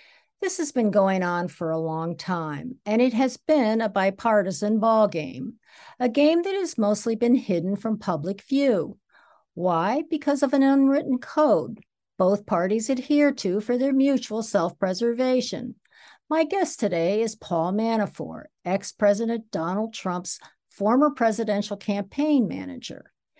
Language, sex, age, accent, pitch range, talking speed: English, female, 60-79, American, 190-270 Hz, 135 wpm